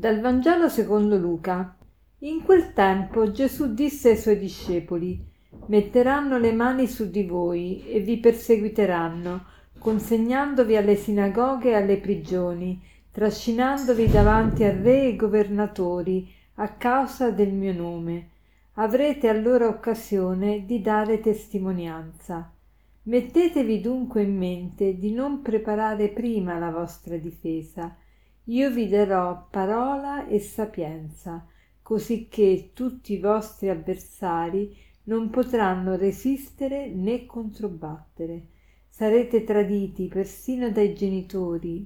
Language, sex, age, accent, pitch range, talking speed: Italian, female, 50-69, native, 185-230 Hz, 110 wpm